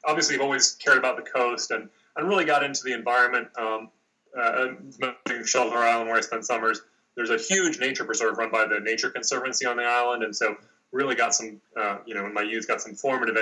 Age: 30-49